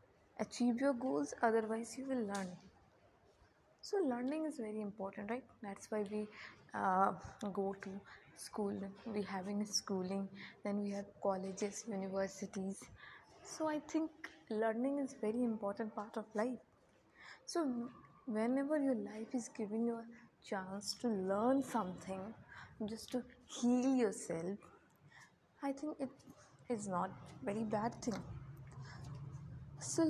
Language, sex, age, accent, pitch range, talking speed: Hindi, female, 20-39, native, 185-240 Hz, 125 wpm